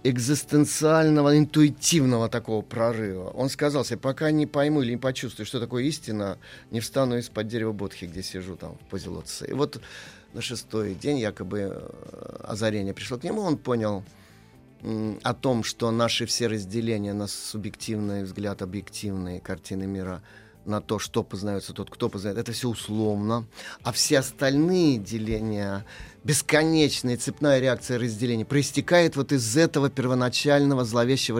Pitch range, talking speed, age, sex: 105-130 Hz, 145 wpm, 30-49, male